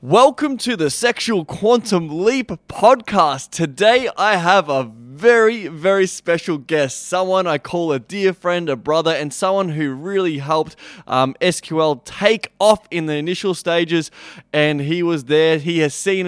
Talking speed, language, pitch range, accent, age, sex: 160 wpm, English, 135-175 Hz, Australian, 20-39, male